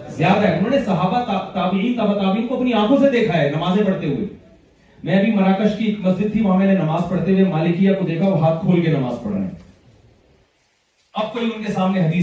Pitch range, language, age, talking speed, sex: 155-195 Hz, Urdu, 40-59, 110 wpm, male